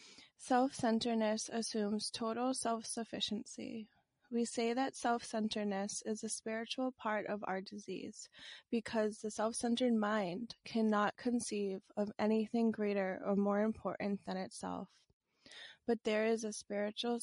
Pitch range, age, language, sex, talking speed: 200-230 Hz, 20-39, English, female, 120 wpm